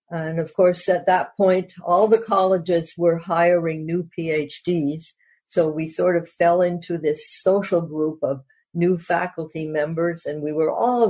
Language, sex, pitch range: English, female, 170-210 Hz